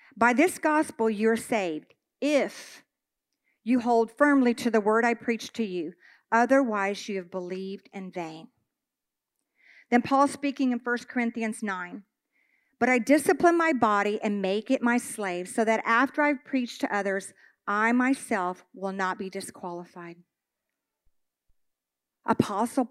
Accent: American